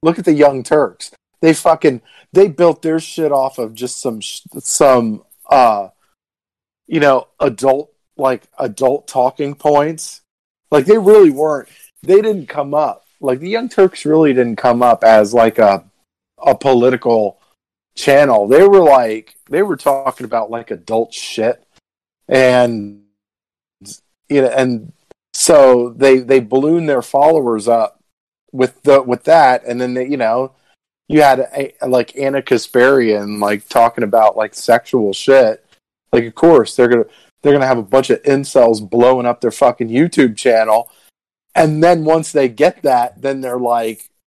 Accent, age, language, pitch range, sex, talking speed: American, 40-59, English, 115-145 Hz, male, 160 wpm